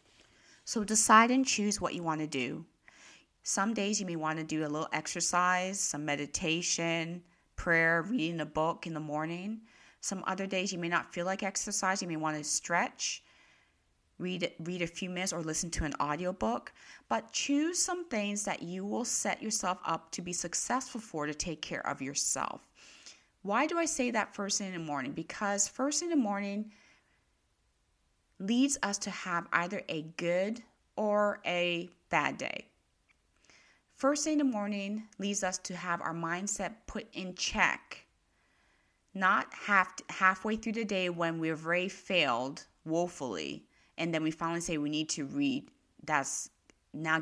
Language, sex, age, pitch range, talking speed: English, female, 30-49, 160-210 Hz, 170 wpm